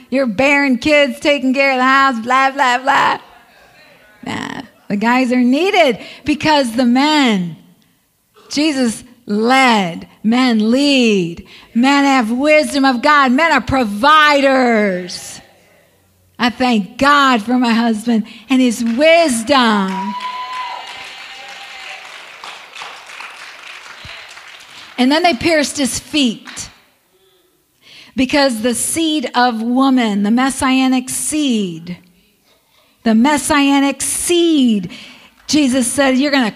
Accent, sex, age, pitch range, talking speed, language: American, female, 50-69, 235-295 Hz, 100 wpm, English